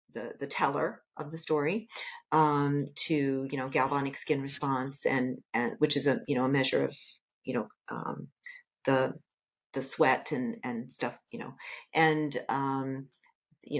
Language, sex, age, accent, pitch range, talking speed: English, female, 40-59, American, 145-195 Hz, 160 wpm